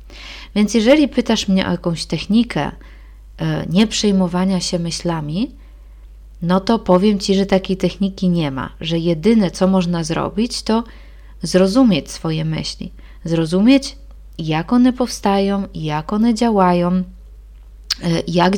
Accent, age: native, 20-39